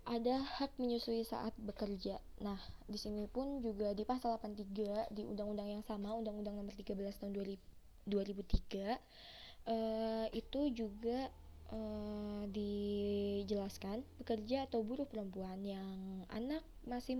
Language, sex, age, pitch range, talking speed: Indonesian, female, 20-39, 205-230 Hz, 120 wpm